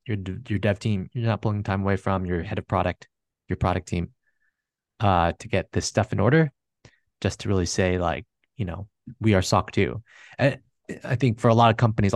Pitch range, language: 90-115 Hz, English